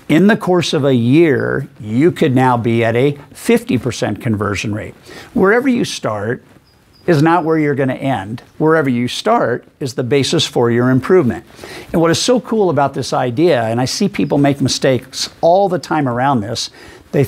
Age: 50-69